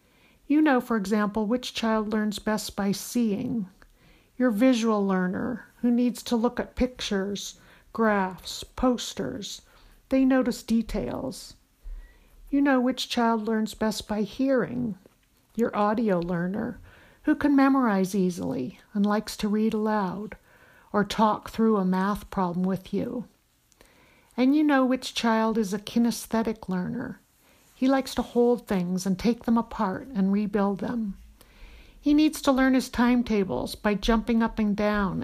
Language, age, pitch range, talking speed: English, 60-79, 205-245 Hz, 145 wpm